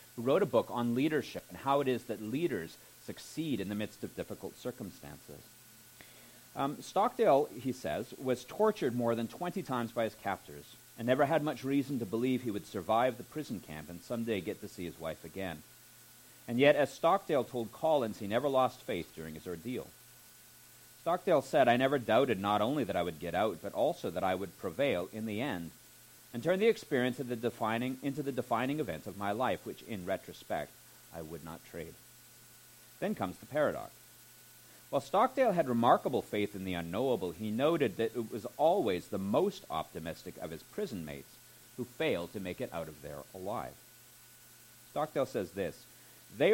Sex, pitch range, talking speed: male, 105-130 Hz, 185 wpm